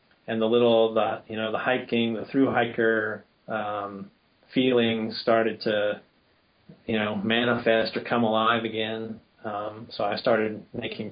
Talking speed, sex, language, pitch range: 130 wpm, male, English, 110-130 Hz